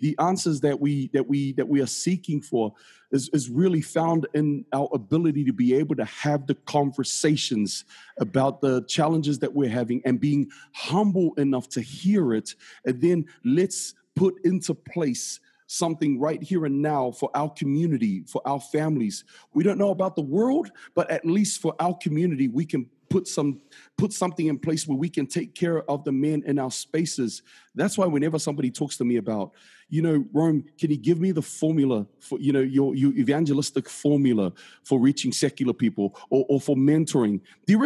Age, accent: 40-59, American